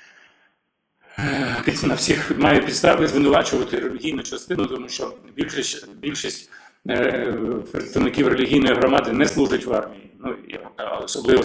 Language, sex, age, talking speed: Ukrainian, male, 40-59, 95 wpm